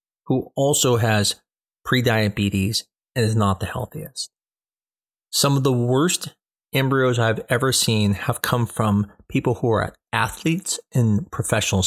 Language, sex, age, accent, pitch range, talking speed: English, male, 40-59, American, 115-155 Hz, 130 wpm